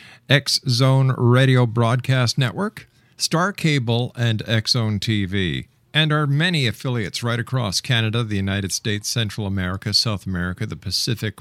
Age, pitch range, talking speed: 50-69, 110-150 Hz, 130 wpm